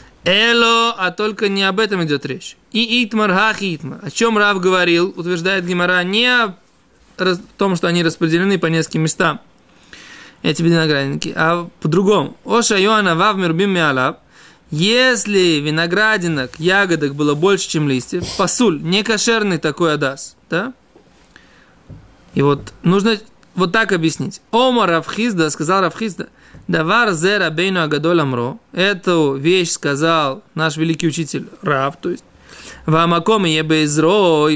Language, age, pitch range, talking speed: Russian, 20-39, 160-205 Hz, 125 wpm